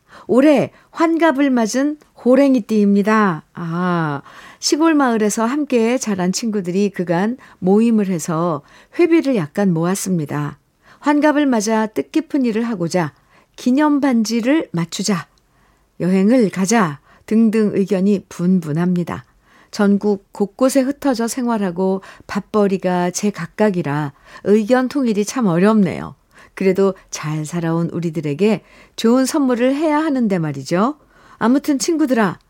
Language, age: Korean, 60-79